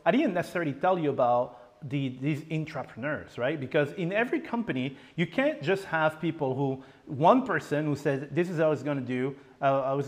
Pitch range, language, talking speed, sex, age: 145-200 Hz, English, 195 wpm, male, 40-59